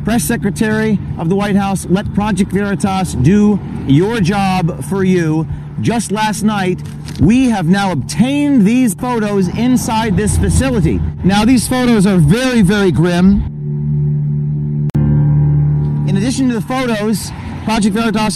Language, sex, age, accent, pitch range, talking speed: English, male, 40-59, American, 175-220 Hz, 130 wpm